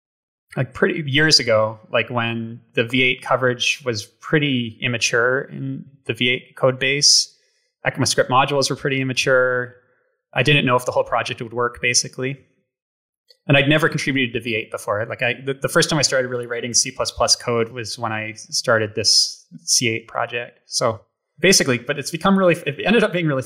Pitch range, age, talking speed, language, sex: 120-155 Hz, 20-39, 180 wpm, English, male